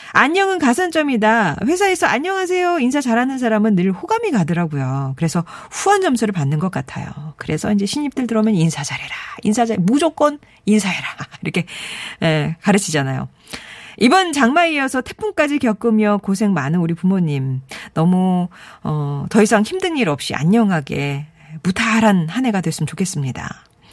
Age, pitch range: 40-59, 165-250 Hz